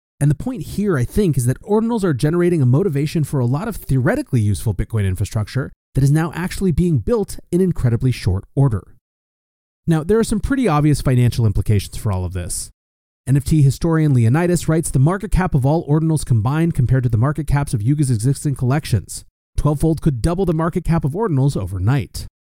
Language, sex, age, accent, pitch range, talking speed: English, male, 30-49, American, 115-165 Hz, 190 wpm